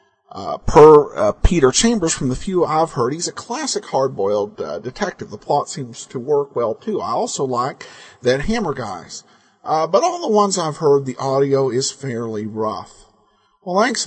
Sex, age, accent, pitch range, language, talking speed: male, 50-69, American, 135-195 Hz, English, 185 wpm